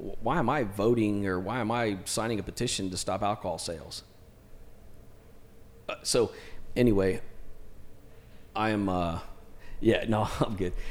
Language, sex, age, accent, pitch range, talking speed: English, male, 40-59, American, 85-110 Hz, 140 wpm